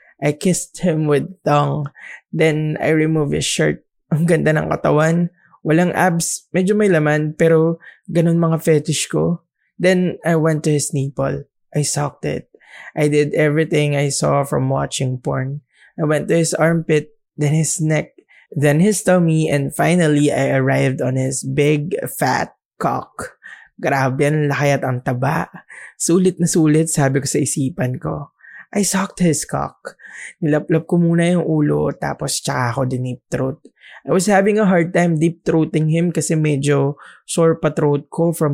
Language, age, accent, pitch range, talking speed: English, 20-39, Filipino, 140-170 Hz, 160 wpm